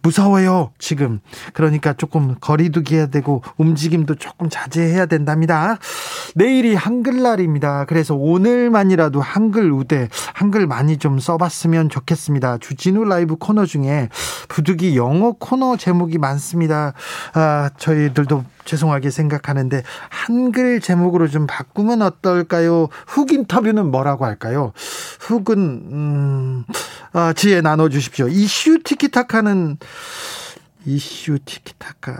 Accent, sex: native, male